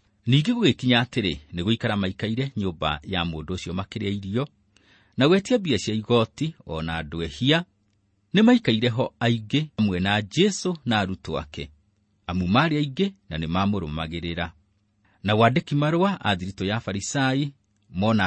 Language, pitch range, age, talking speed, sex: English, 95-130 Hz, 40-59, 125 wpm, male